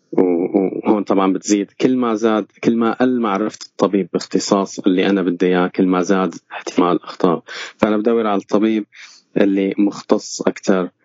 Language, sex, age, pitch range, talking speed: Arabic, male, 20-39, 95-120 Hz, 150 wpm